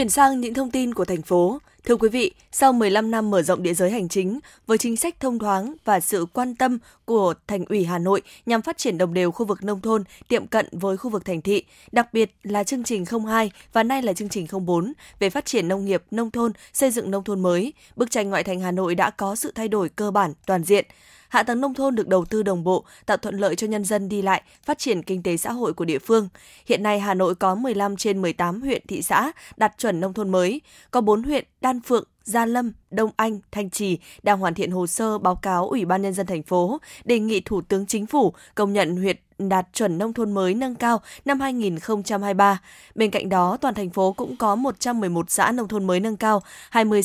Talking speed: 240 wpm